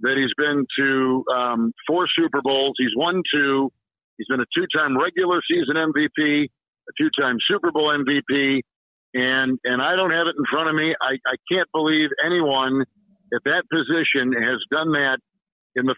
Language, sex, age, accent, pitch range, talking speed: English, male, 50-69, American, 135-170 Hz, 175 wpm